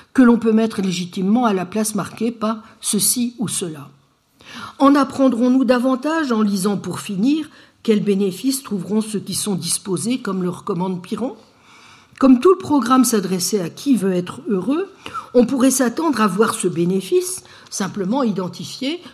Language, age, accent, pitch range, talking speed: French, 60-79, French, 190-260 Hz, 155 wpm